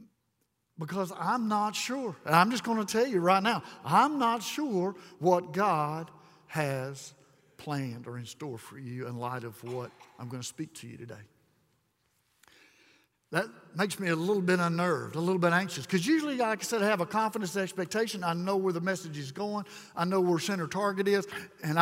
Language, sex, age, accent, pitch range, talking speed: English, male, 60-79, American, 140-190 Hz, 195 wpm